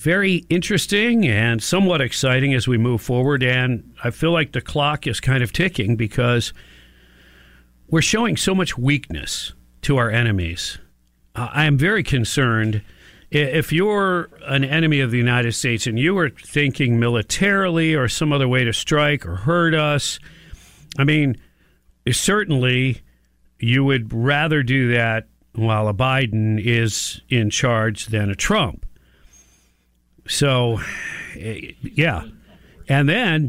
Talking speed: 135 wpm